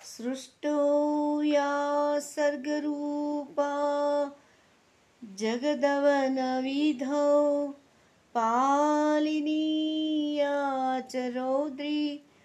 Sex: female